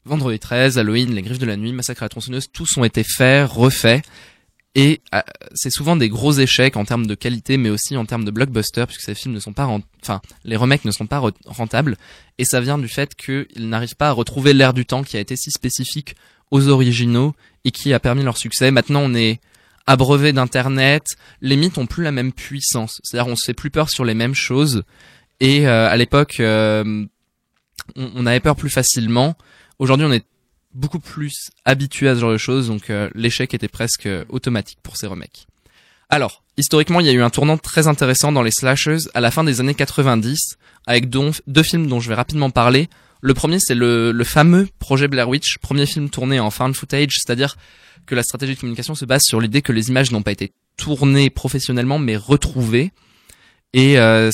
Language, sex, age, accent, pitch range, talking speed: French, male, 20-39, French, 115-140 Hz, 210 wpm